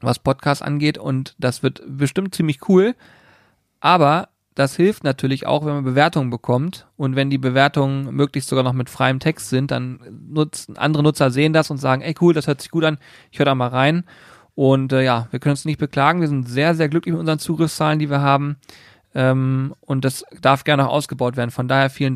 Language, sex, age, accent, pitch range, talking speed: German, male, 40-59, German, 135-165 Hz, 215 wpm